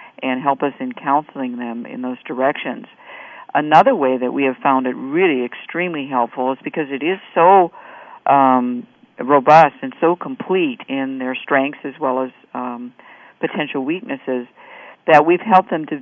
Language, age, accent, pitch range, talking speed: English, 50-69, American, 130-160 Hz, 160 wpm